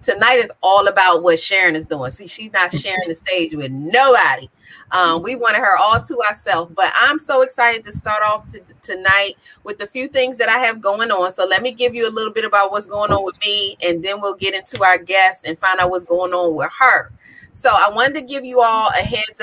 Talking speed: 240 wpm